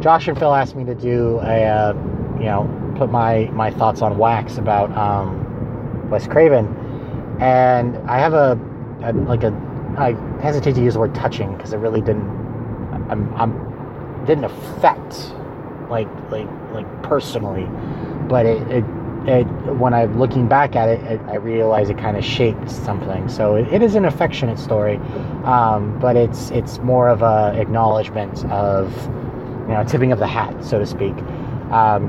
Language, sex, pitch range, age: English, male, 110-135 Hz, 30-49